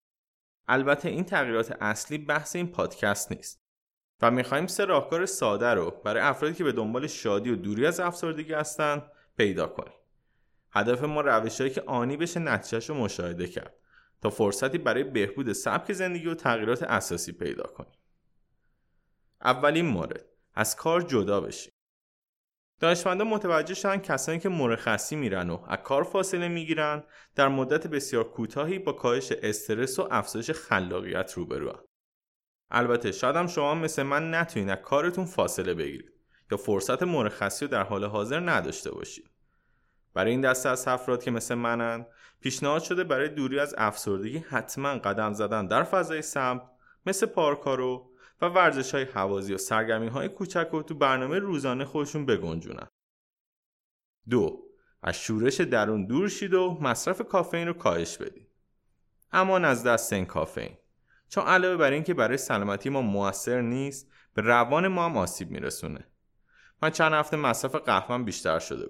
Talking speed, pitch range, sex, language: 145 wpm, 120-170 Hz, male, Persian